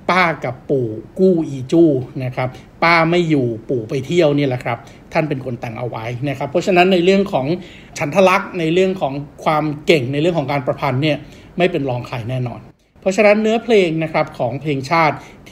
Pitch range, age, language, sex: 130-165 Hz, 60-79, Thai, male